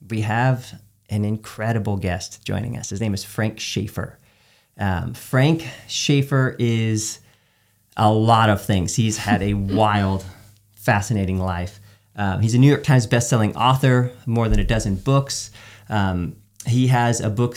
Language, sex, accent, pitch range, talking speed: English, male, American, 105-125 Hz, 150 wpm